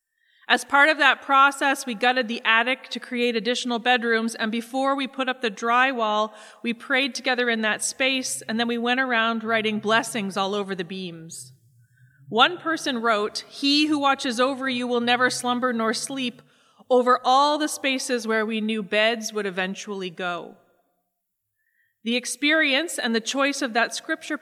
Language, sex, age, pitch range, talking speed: English, female, 30-49, 215-255 Hz, 170 wpm